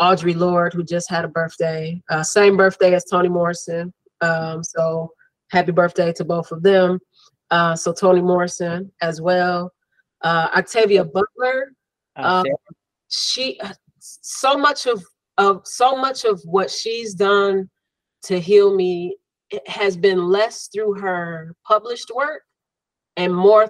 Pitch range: 170-205 Hz